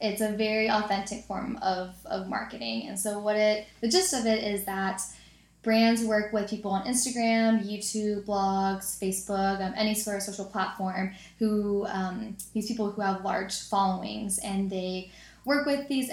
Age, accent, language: 10-29, American, English